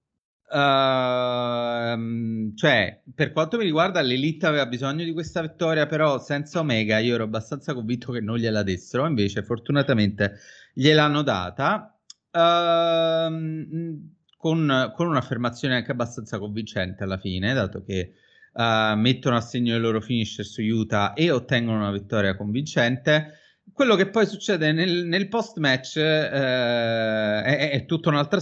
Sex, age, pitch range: male, 30-49, 115-155 Hz